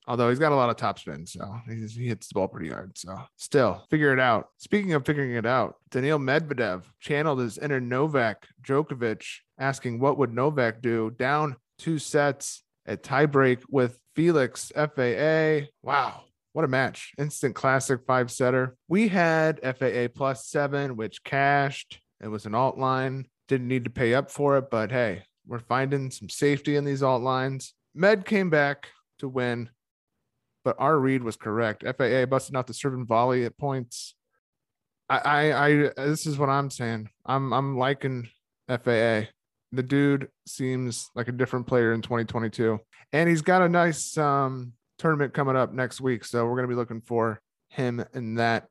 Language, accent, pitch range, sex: English, American, 115-140 Hz, male